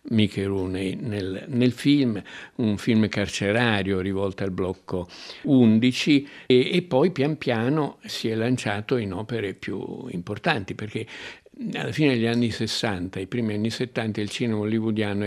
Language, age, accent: Italian, 60-79, native